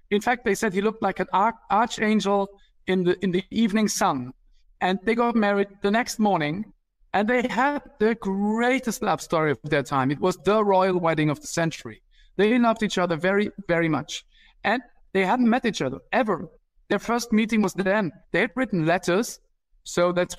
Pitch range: 155-200 Hz